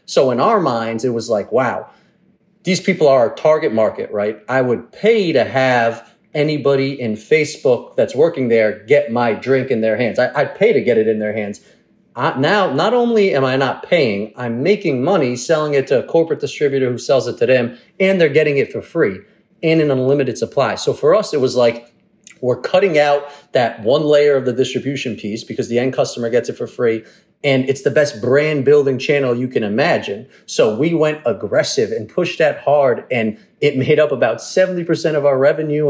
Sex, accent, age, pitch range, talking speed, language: male, American, 30-49, 120-155 Hz, 205 wpm, English